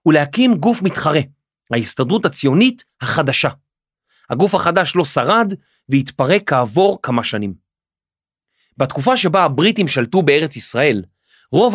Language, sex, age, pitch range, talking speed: Hebrew, male, 30-49, 135-205 Hz, 105 wpm